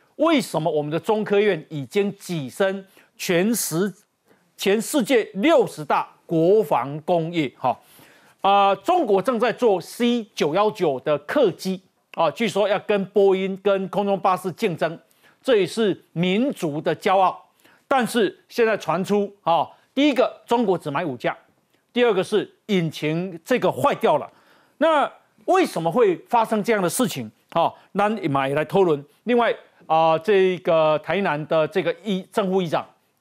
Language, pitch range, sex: Chinese, 165-230 Hz, male